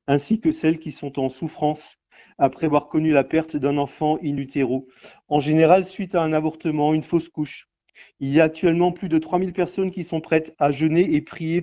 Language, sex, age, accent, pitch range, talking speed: French, male, 40-59, French, 155-185 Hz, 205 wpm